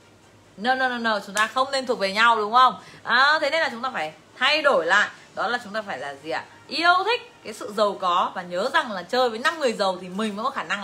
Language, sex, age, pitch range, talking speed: Vietnamese, female, 20-39, 195-275 Hz, 295 wpm